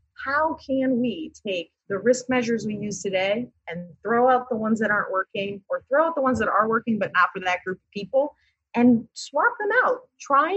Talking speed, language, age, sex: 215 wpm, English, 30-49, female